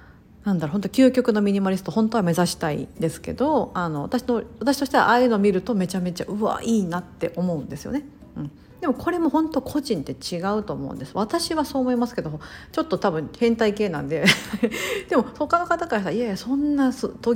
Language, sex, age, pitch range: Japanese, female, 50-69, 165-245 Hz